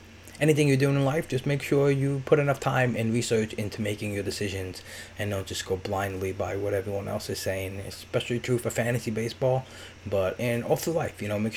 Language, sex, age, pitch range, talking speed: English, male, 20-39, 100-120 Hz, 215 wpm